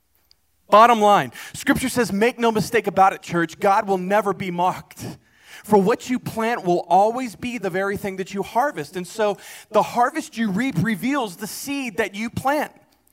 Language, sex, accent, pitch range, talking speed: English, male, American, 175-235 Hz, 185 wpm